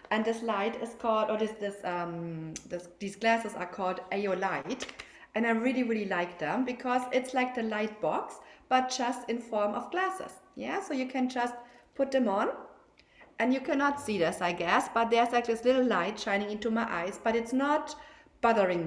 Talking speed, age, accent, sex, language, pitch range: 200 wpm, 40-59, German, female, English, 200-255 Hz